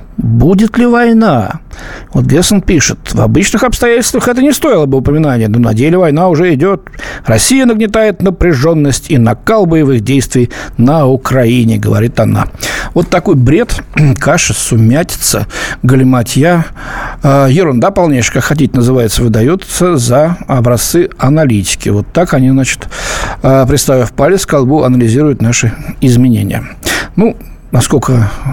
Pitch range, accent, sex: 120-175 Hz, native, male